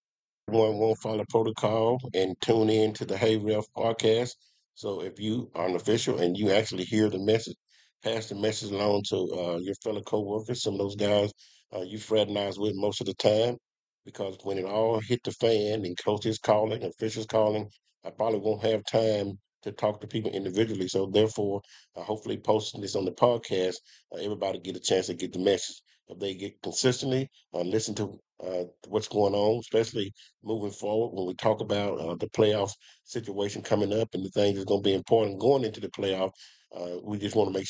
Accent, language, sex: American, English, male